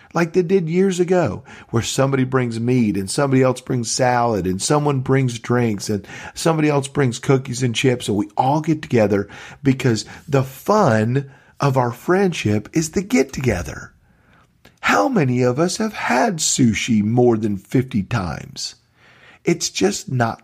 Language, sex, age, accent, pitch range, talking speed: English, male, 40-59, American, 110-140 Hz, 160 wpm